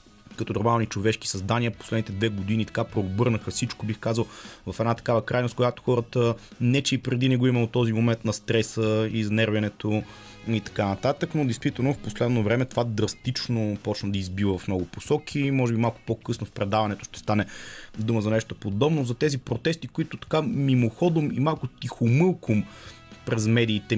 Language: Bulgarian